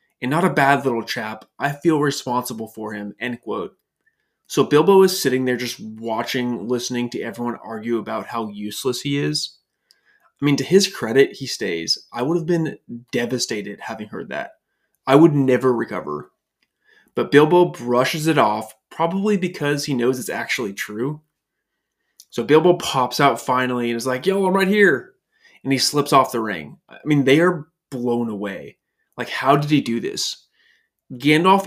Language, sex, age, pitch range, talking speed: English, male, 20-39, 120-170 Hz, 170 wpm